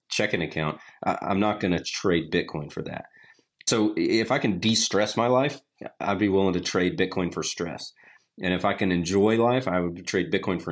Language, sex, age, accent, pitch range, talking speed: English, male, 30-49, American, 90-115 Hz, 200 wpm